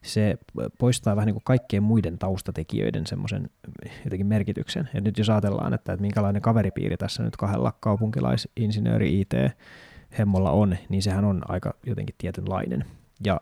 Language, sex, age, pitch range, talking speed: Finnish, male, 20-39, 100-115 Hz, 140 wpm